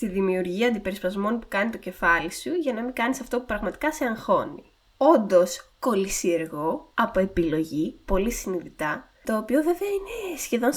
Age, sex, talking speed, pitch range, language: 20-39, female, 155 wpm, 195-260 Hz, Greek